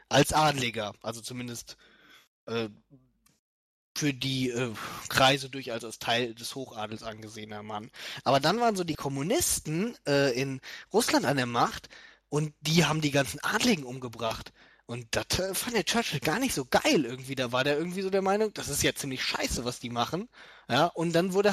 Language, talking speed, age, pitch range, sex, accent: German, 185 wpm, 20-39, 115-155 Hz, male, German